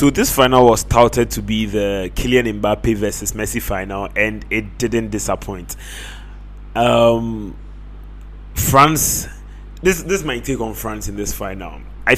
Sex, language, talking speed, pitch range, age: male, English, 145 wpm, 105-135 Hz, 20-39